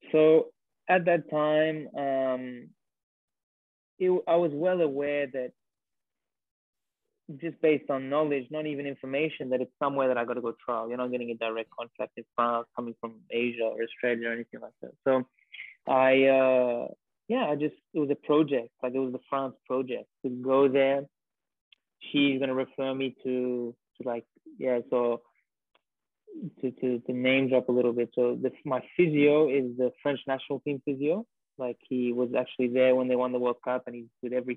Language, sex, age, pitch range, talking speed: English, male, 20-39, 125-145 Hz, 185 wpm